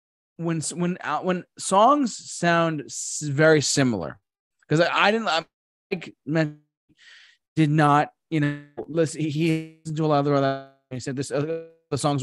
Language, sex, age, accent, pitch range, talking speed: English, male, 20-39, American, 125-170 Hz, 145 wpm